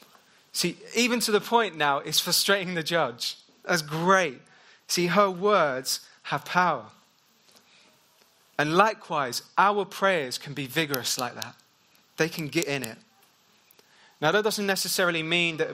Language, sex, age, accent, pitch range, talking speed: English, male, 20-39, British, 140-180 Hz, 140 wpm